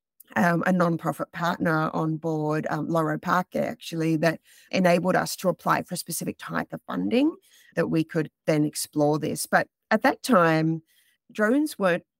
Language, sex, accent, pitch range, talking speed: English, female, Australian, 155-190 Hz, 160 wpm